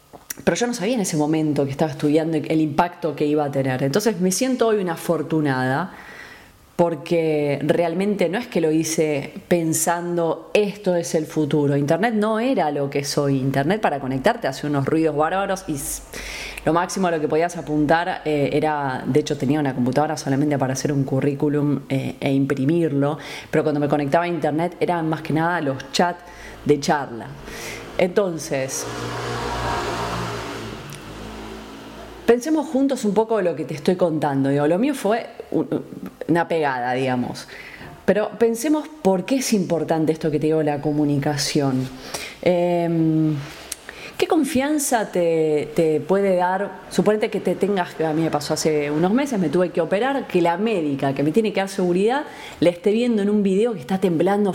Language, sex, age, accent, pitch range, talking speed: Spanish, female, 20-39, Argentinian, 150-190 Hz, 170 wpm